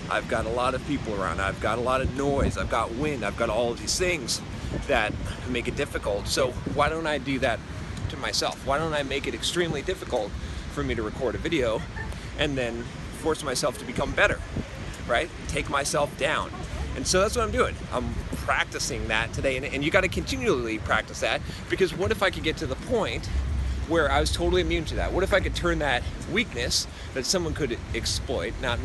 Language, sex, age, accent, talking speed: English, male, 30-49, American, 210 wpm